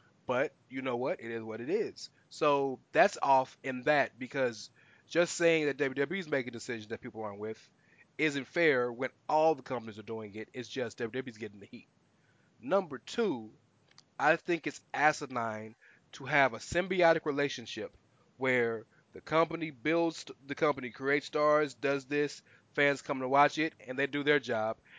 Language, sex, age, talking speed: English, male, 20-39, 175 wpm